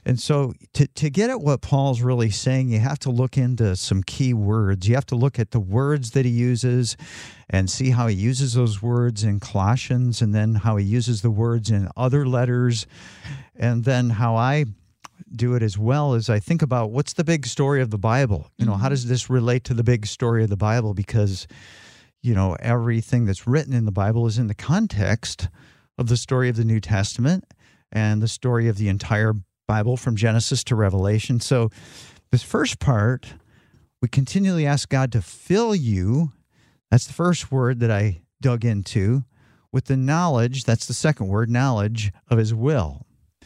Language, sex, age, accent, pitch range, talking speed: English, male, 50-69, American, 110-135 Hz, 195 wpm